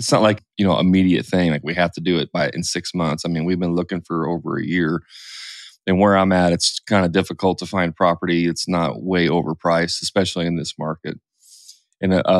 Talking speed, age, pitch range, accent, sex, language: 230 wpm, 20-39, 85-105 Hz, American, male, English